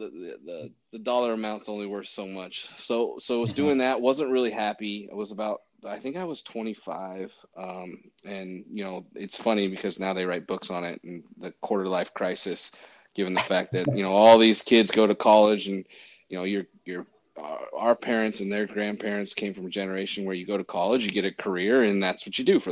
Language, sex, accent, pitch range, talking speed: English, male, American, 100-115 Hz, 230 wpm